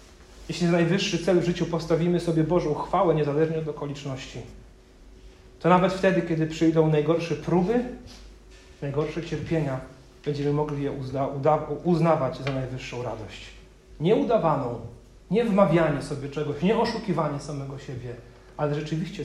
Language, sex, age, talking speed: Polish, male, 40-59, 135 wpm